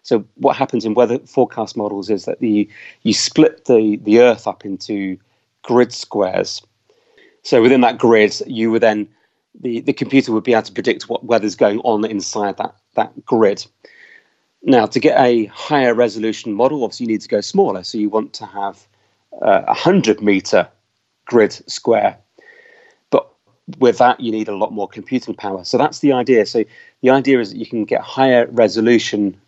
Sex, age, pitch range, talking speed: male, 30-49, 105-125 Hz, 180 wpm